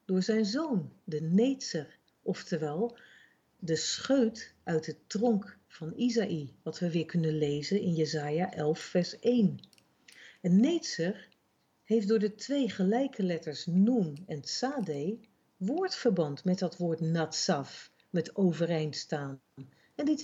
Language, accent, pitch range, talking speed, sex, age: Dutch, Dutch, 165-235 Hz, 130 wpm, female, 50-69